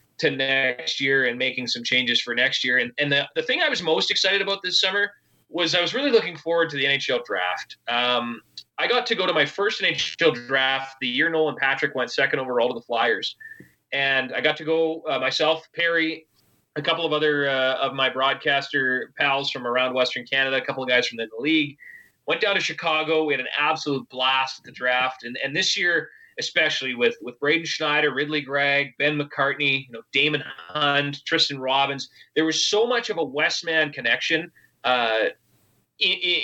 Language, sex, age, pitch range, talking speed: English, male, 20-39, 135-165 Hz, 200 wpm